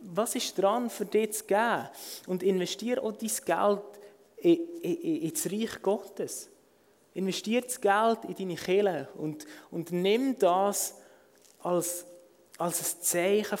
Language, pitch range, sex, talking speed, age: German, 170-220 Hz, male, 140 wpm, 20-39